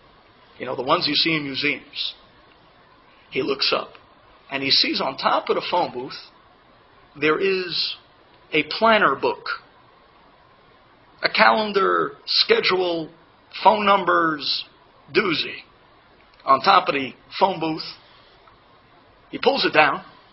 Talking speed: 120 wpm